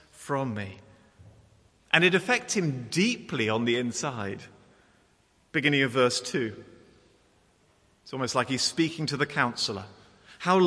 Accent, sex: British, male